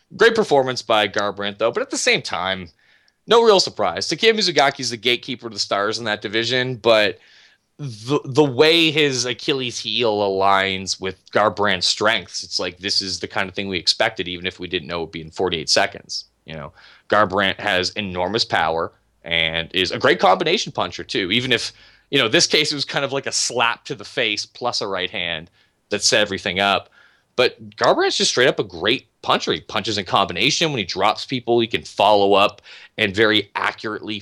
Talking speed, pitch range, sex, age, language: 200 wpm, 100-135 Hz, male, 20-39, English